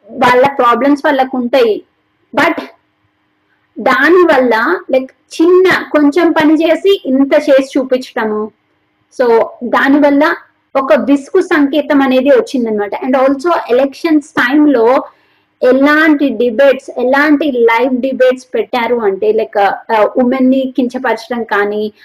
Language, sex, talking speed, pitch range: Telugu, female, 110 wpm, 255-325 Hz